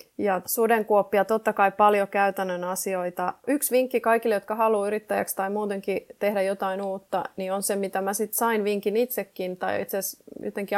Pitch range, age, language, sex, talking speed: 185-215 Hz, 30-49, Finnish, female, 175 wpm